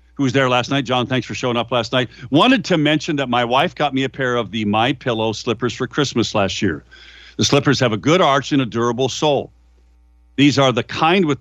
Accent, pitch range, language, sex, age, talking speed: American, 100-140 Hz, English, male, 50-69, 240 wpm